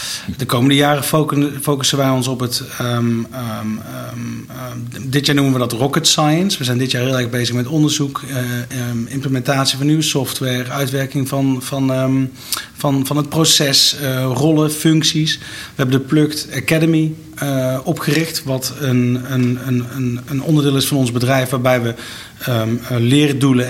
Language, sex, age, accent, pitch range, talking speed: Dutch, male, 40-59, Dutch, 120-145 Hz, 150 wpm